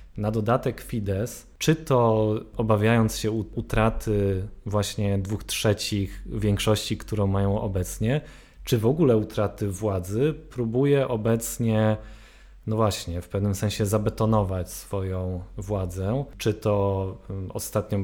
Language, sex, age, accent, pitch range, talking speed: Polish, male, 20-39, native, 100-120 Hz, 110 wpm